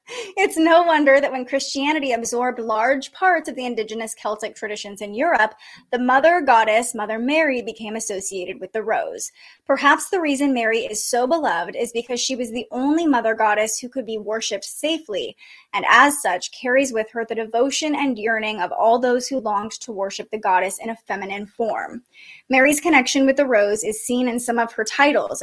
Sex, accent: female, American